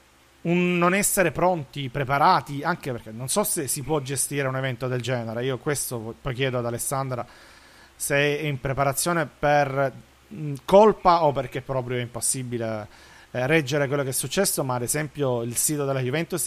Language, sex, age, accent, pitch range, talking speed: Italian, male, 40-59, native, 125-150 Hz, 175 wpm